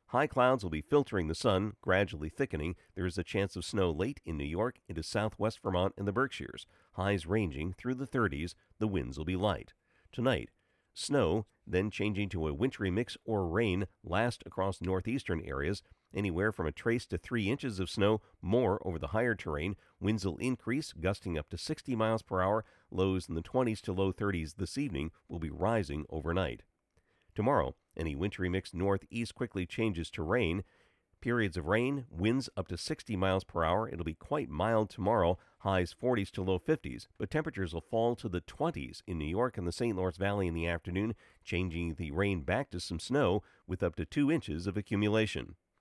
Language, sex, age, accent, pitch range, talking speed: English, male, 50-69, American, 85-115 Hz, 195 wpm